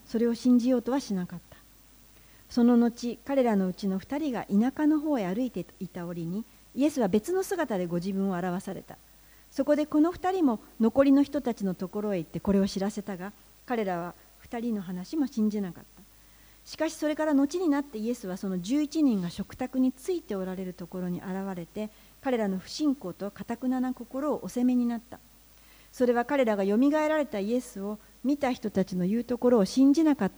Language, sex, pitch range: Japanese, female, 190-255 Hz